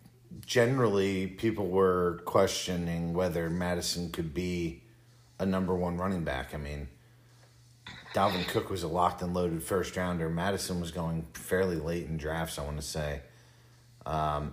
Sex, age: male, 30-49